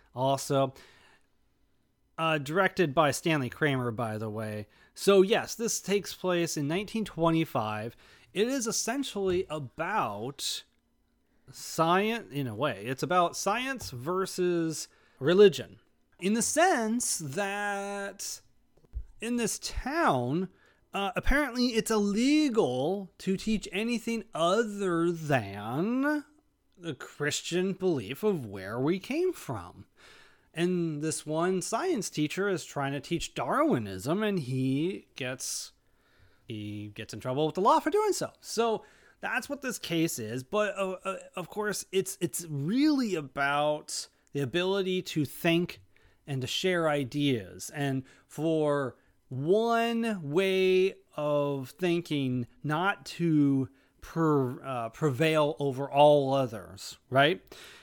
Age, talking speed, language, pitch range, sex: 30-49, 120 wpm, English, 140-200 Hz, male